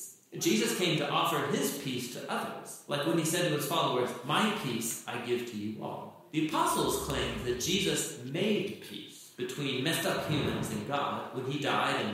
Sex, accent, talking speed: male, American, 195 wpm